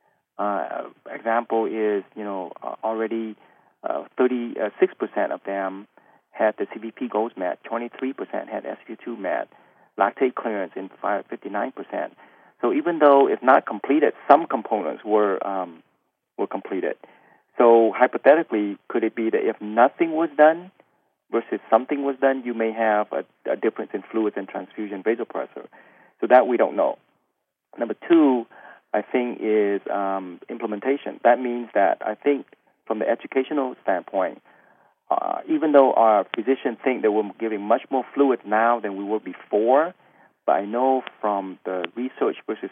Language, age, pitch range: English, 40-59, 105-125 Hz